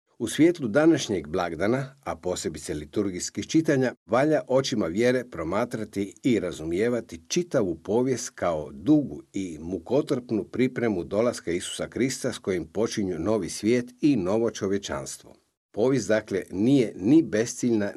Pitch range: 100-135 Hz